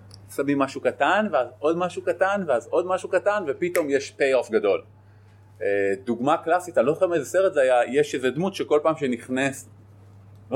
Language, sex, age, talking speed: Hebrew, male, 30-49, 175 wpm